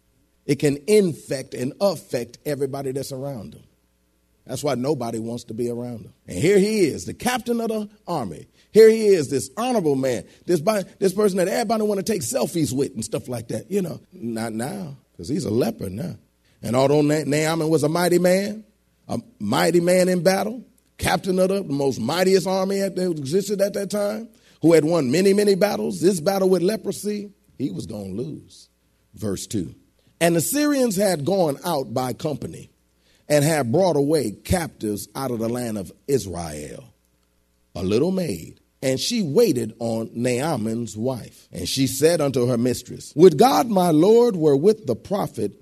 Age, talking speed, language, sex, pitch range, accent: 40-59, 180 wpm, English, male, 120-195 Hz, American